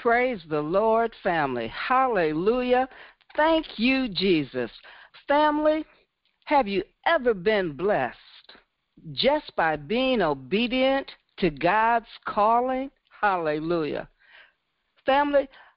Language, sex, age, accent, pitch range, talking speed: English, female, 60-79, American, 160-265 Hz, 90 wpm